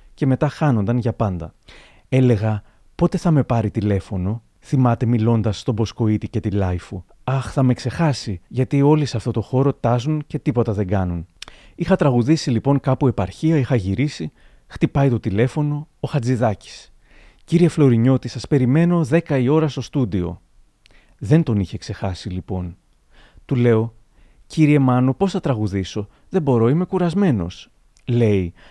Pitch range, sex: 105-140 Hz, male